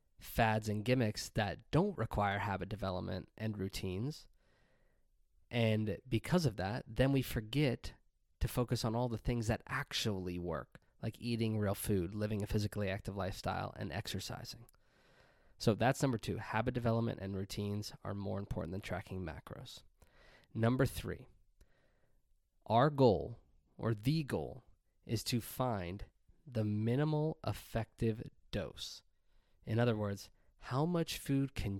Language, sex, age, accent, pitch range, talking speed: English, male, 20-39, American, 95-120 Hz, 135 wpm